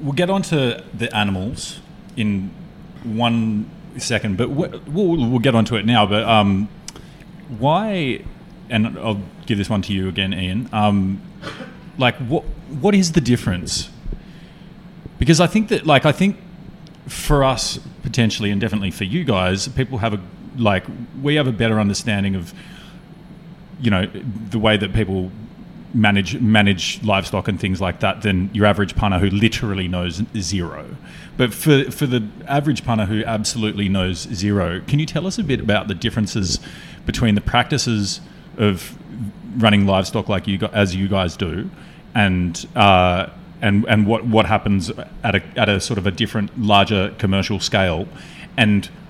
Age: 30-49